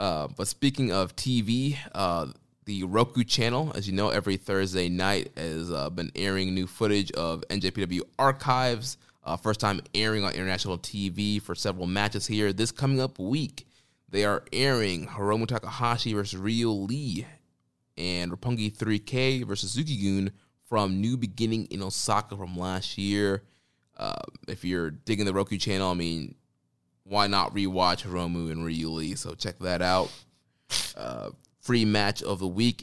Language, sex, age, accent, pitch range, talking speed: English, male, 20-39, American, 90-120 Hz, 155 wpm